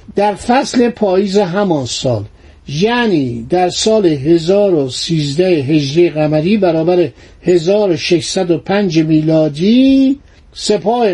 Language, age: Persian, 50-69